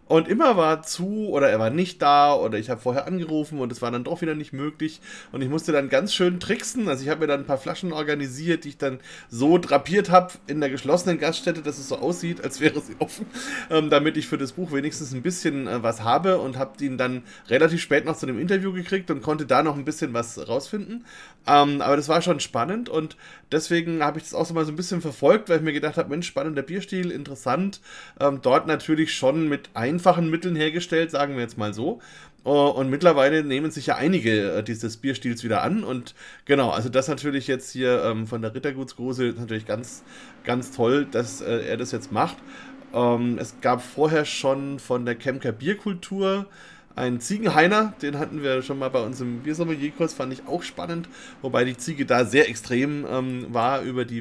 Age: 30-49